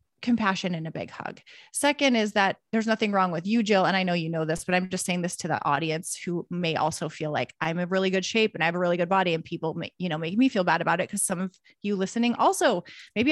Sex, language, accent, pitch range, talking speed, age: female, English, American, 185-235 Hz, 285 wpm, 30-49